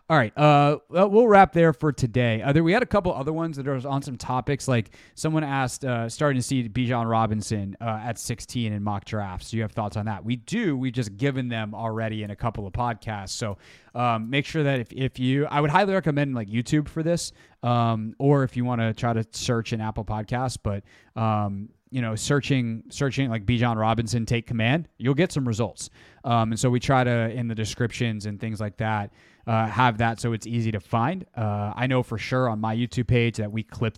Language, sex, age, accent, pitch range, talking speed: English, male, 30-49, American, 110-135 Hz, 235 wpm